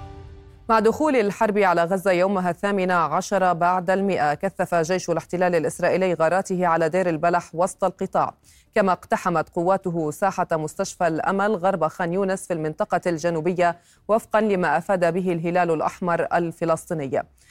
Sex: female